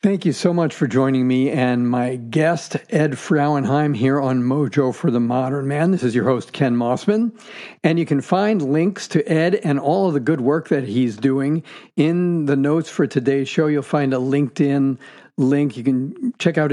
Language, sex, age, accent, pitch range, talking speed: English, male, 50-69, American, 135-160 Hz, 200 wpm